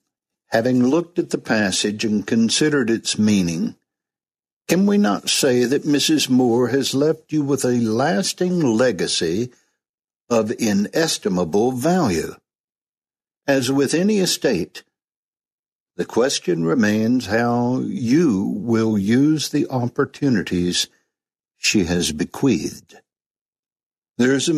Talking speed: 110 wpm